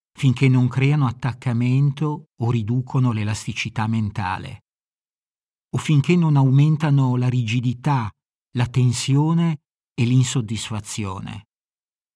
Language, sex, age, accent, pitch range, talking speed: Italian, male, 50-69, native, 110-150 Hz, 90 wpm